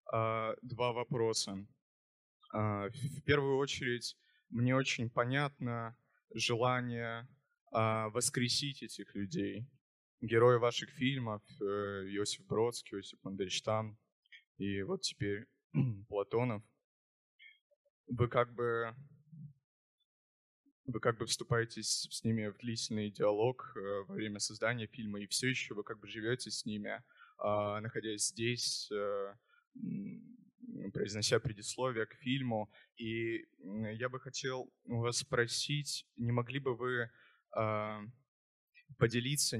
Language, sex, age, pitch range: Russian, male, 20-39, 110-135 Hz